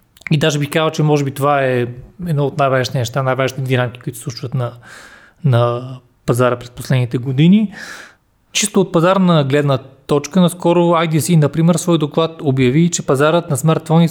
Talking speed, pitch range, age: 170 wpm, 140-175 Hz, 30-49